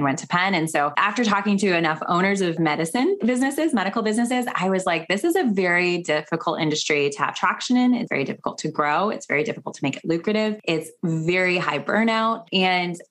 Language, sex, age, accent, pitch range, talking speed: English, female, 20-39, American, 155-190 Hz, 205 wpm